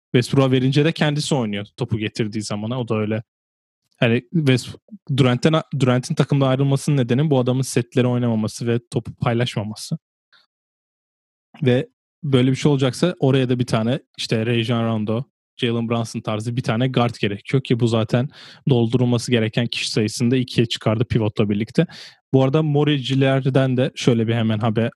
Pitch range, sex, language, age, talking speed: 115-140 Hz, male, Turkish, 20-39, 150 wpm